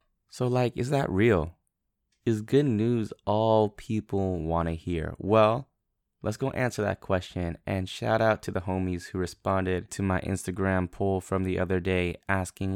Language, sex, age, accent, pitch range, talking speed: English, male, 20-39, American, 90-115 Hz, 170 wpm